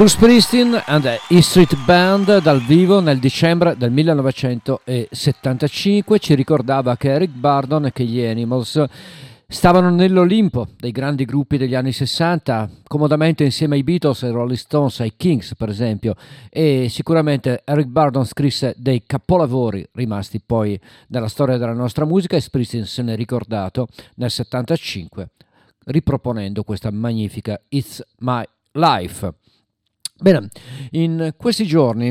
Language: Italian